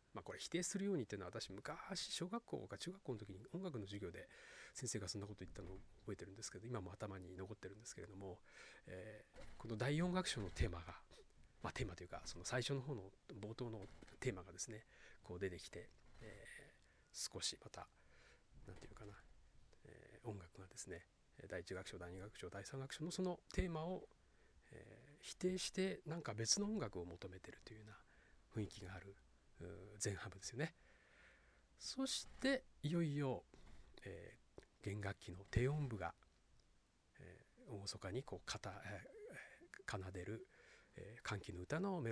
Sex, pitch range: male, 95-150 Hz